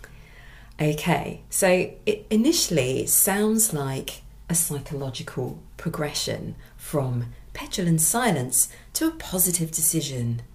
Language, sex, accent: English, female, British